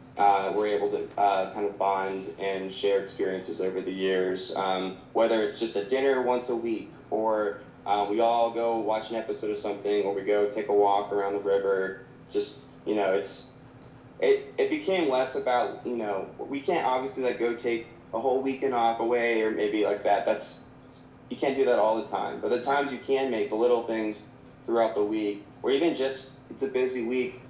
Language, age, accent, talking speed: English, 20-39, American, 205 wpm